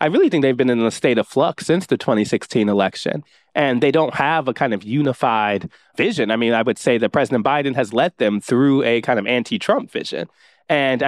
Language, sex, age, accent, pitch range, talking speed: English, male, 20-39, American, 120-145 Hz, 220 wpm